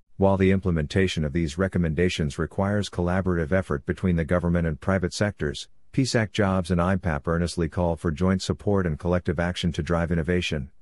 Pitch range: 85-100 Hz